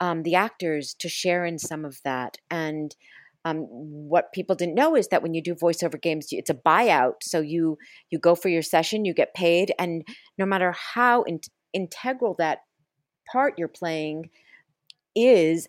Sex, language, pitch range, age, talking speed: female, English, 165-200 Hz, 40-59, 175 wpm